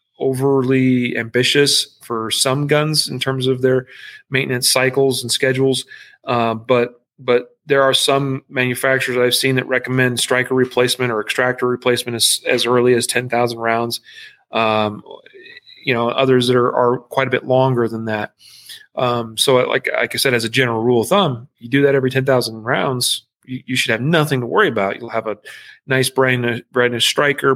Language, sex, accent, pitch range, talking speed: English, male, American, 120-135 Hz, 180 wpm